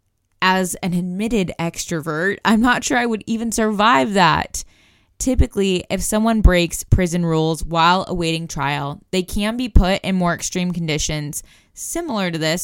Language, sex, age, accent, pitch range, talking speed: English, female, 10-29, American, 165-205 Hz, 150 wpm